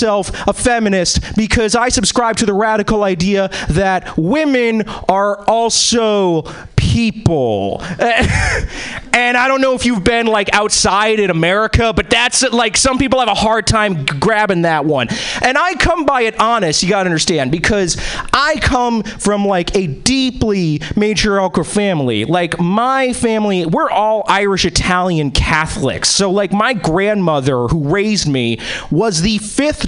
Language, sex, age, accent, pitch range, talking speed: English, male, 30-49, American, 185-245 Hz, 150 wpm